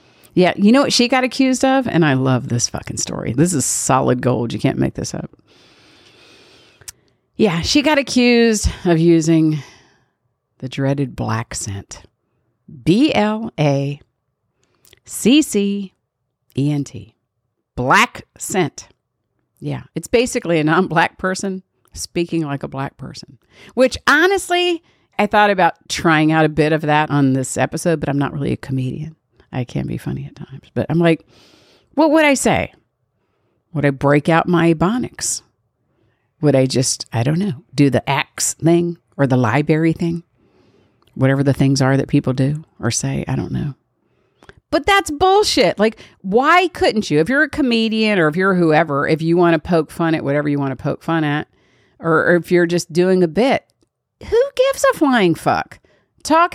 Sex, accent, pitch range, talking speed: female, American, 135-200 Hz, 165 wpm